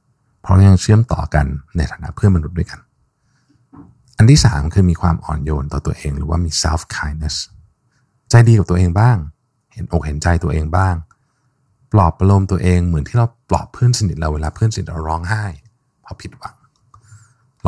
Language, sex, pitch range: Thai, male, 80-120 Hz